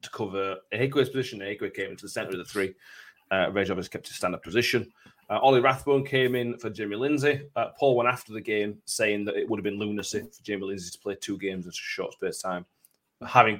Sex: male